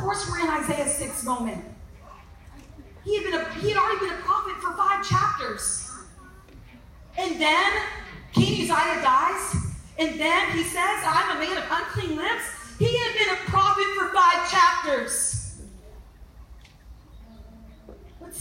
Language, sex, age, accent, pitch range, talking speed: English, female, 40-59, American, 280-400 Hz, 140 wpm